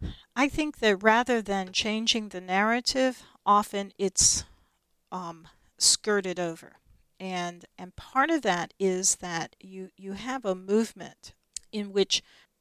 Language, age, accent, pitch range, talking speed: English, 50-69, American, 185-215 Hz, 130 wpm